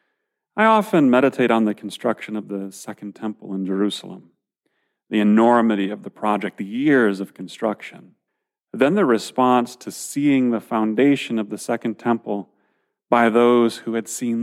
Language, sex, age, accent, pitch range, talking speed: English, male, 40-59, American, 110-140 Hz, 155 wpm